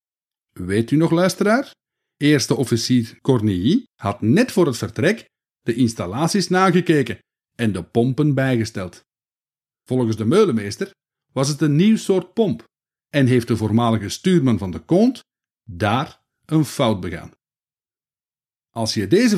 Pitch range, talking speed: 115-170 Hz, 135 wpm